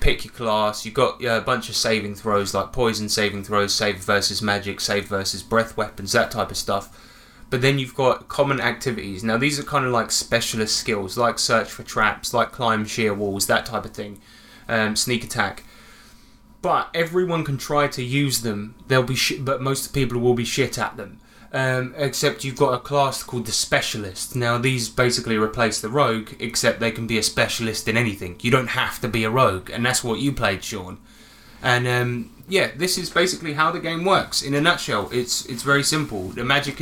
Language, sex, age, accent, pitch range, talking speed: English, male, 20-39, British, 110-135 Hz, 205 wpm